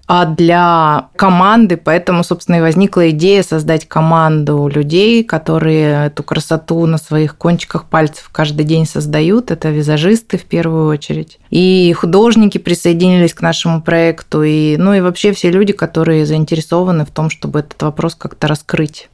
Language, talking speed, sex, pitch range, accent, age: Russian, 145 wpm, female, 155-185 Hz, native, 20-39